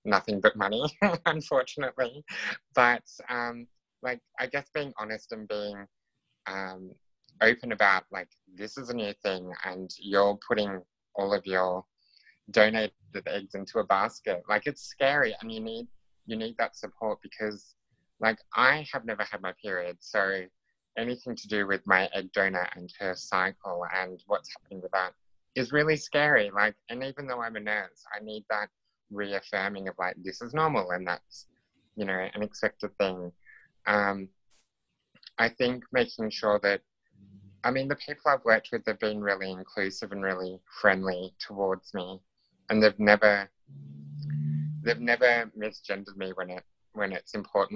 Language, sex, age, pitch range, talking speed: English, male, 20-39, 95-120 Hz, 160 wpm